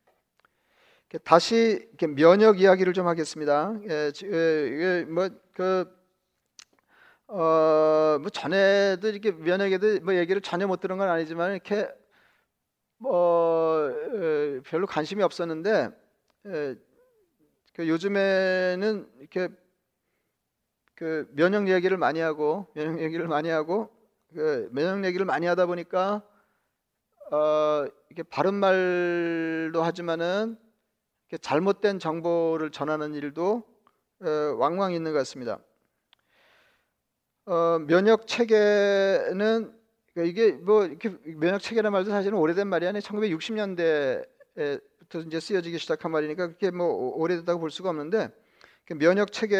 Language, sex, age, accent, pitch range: Korean, male, 40-59, native, 165-210 Hz